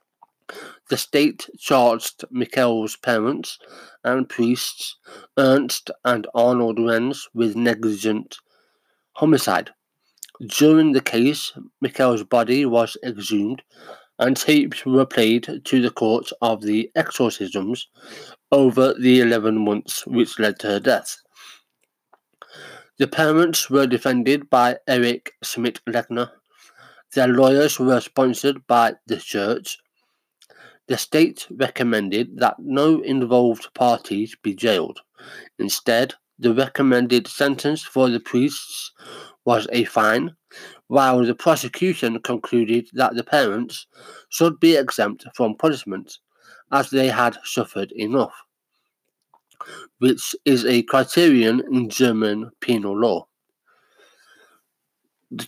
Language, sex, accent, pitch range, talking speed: English, male, British, 115-135 Hz, 110 wpm